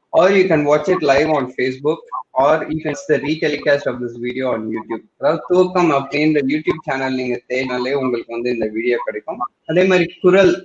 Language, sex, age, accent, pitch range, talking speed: Tamil, male, 20-39, native, 130-180 Hz, 185 wpm